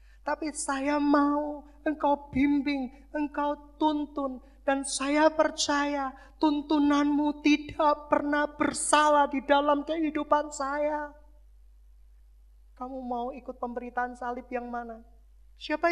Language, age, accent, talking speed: Indonesian, 20-39, native, 100 wpm